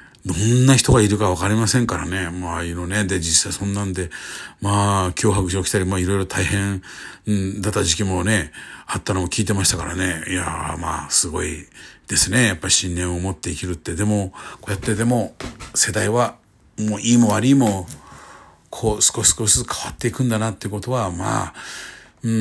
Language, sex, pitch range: Japanese, male, 90-115 Hz